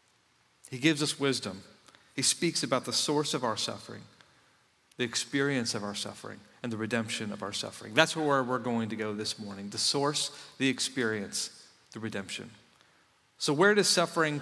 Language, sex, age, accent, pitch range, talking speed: English, male, 40-59, American, 125-190 Hz, 170 wpm